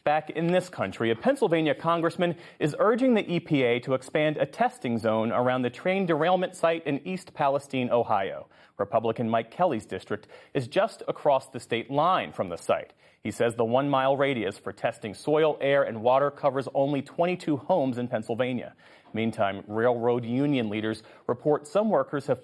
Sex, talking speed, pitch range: male, 170 wpm, 120-155 Hz